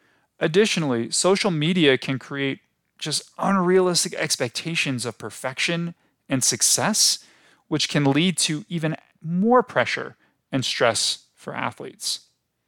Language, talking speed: English, 110 wpm